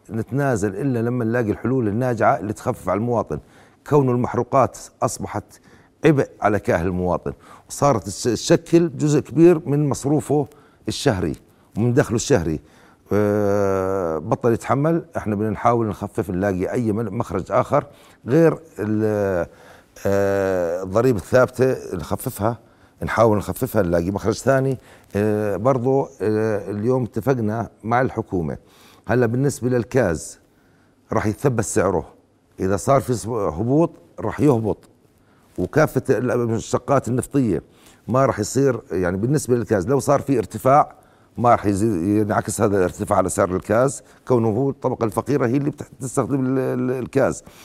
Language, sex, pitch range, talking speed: Arabic, male, 105-135 Hz, 115 wpm